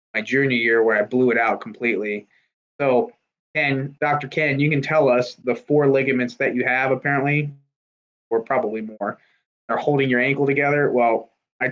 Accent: American